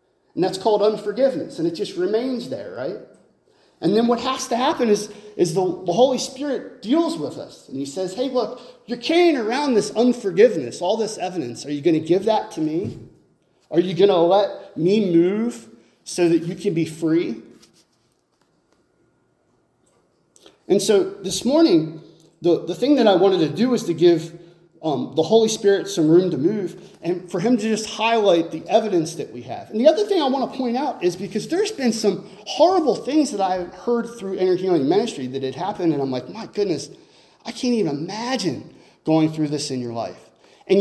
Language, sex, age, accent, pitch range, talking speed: English, male, 30-49, American, 170-240 Hz, 200 wpm